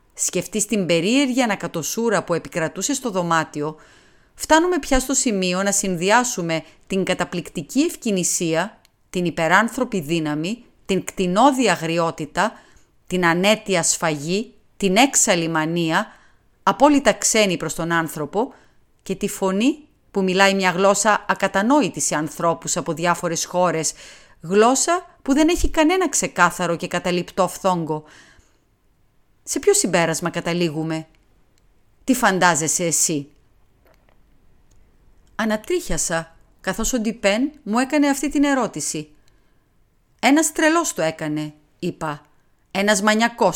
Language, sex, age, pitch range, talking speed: Greek, female, 30-49, 160-225 Hz, 105 wpm